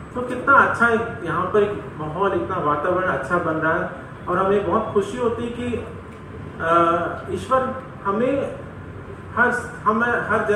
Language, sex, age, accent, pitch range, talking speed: Hindi, male, 30-49, native, 175-220 Hz, 155 wpm